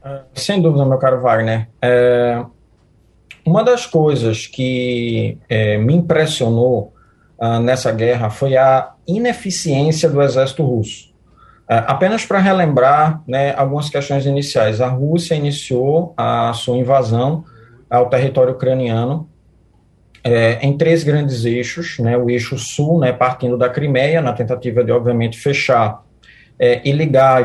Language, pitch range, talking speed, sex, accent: Portuguese, 120-140 Hz, 130 wpm, male, Brazilian